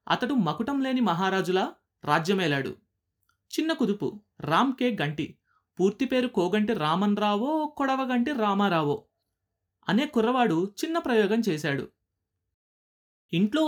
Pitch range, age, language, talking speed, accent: 155-240 Hz, 30-49, Telugu, 95 wpm, native